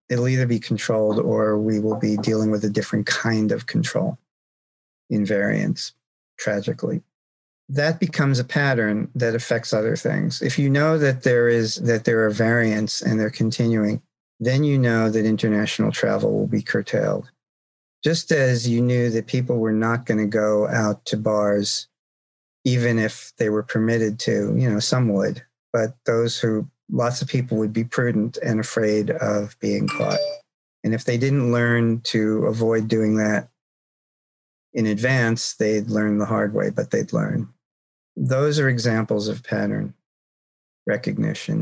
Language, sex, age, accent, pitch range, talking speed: English, male, 50-69, American, 105-125 Hz, 160 wpm